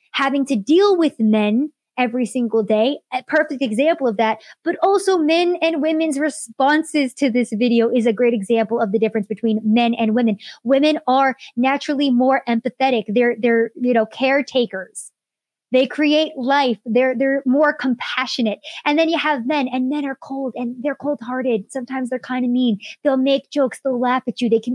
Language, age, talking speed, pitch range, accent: English, 20-39, 185 wpm, 230-280 Hz, American